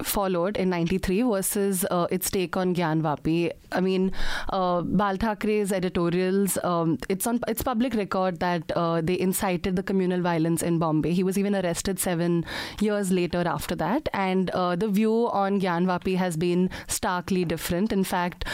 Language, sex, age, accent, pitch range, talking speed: English, female, 30-49, Indian, 180-215 Hz, 165 wpm